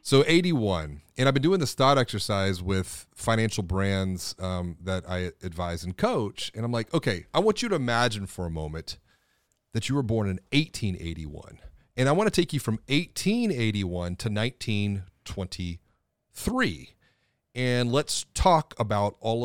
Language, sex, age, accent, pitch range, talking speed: English, male, 30-49, American, 95-125 Hz, 155 wpm